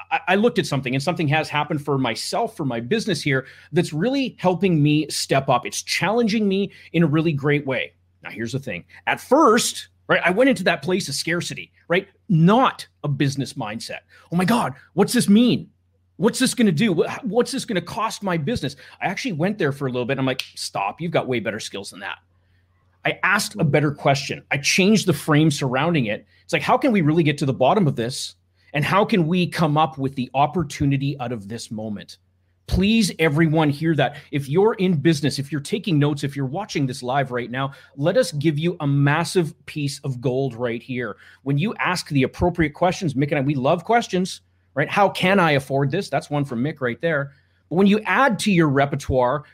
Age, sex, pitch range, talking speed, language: 30-49, male, 135-185 Hz, 220 wpm, English